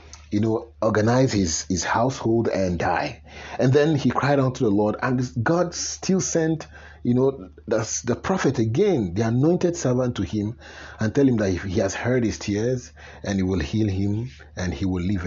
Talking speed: 195 wpm